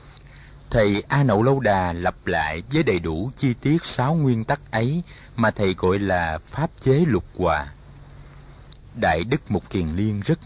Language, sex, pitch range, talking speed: Vietnamese, male, 95-135 Hz, 170 wpm